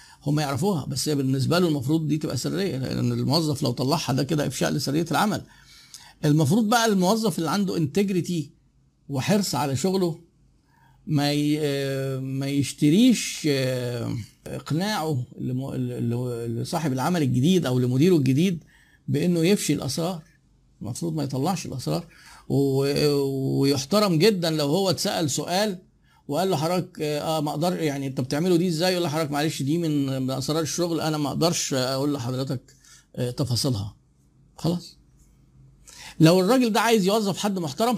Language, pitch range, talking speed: Arabic, 135-175 Hz, 135 wpm